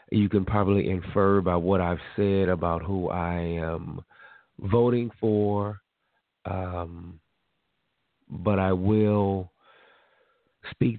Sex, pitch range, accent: male, 90-105 Hz, American